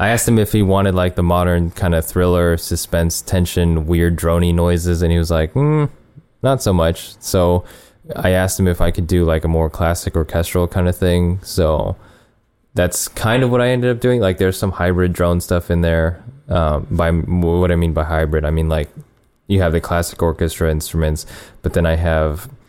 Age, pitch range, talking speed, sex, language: 20-39, 85-100 Hz, 205 wpm, male, English